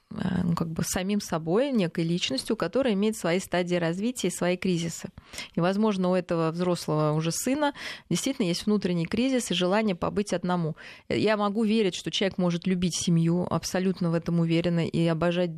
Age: 20-39